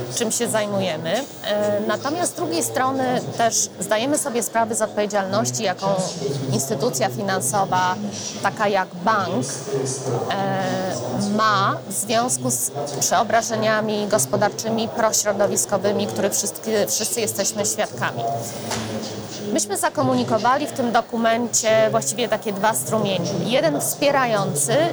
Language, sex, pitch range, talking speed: Polish, female, 185-235 Hz, 105 wpm